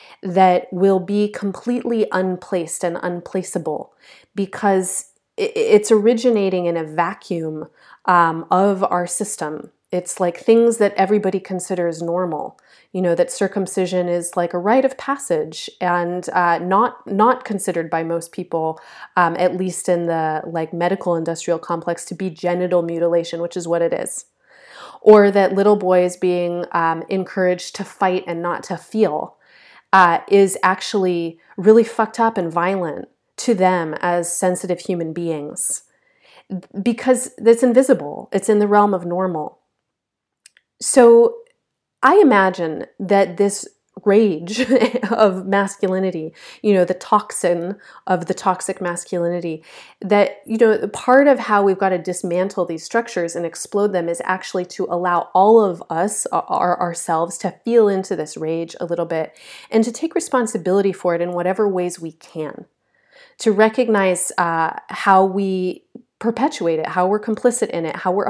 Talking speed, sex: 150 wpm, female